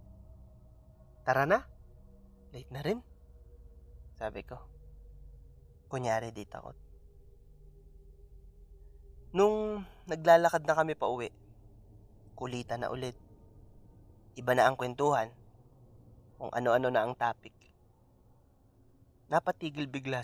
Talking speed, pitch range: 85 wpm, 100-130 Hz